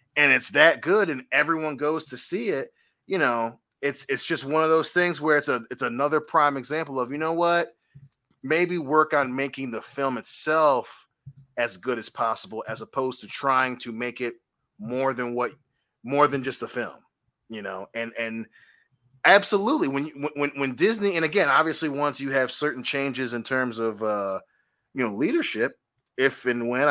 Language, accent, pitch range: English, American, 125-150 Hz